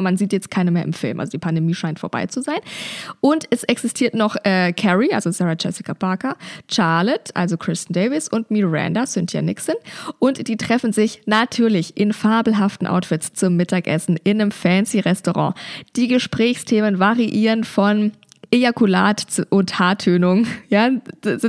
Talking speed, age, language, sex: 155 wpm, 20-39, German, female